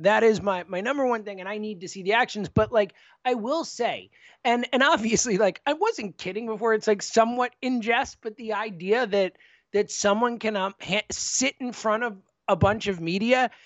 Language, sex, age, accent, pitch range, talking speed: English, male, 30-49, American, 195-245 Hz, 205 wpm